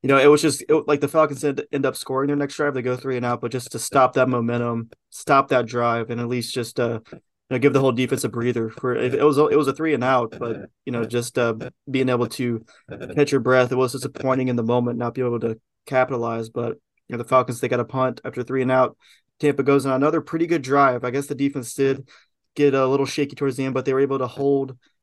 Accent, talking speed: American, 270 wpm